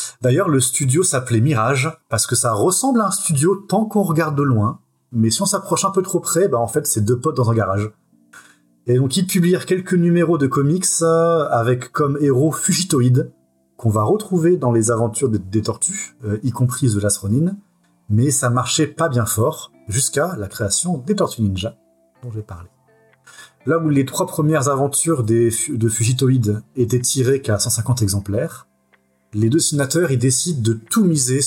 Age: 30-49